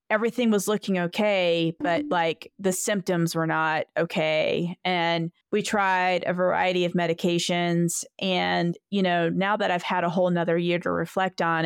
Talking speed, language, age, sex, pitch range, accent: 165 wpm, English, 30-49, female, 170-215 Hz, American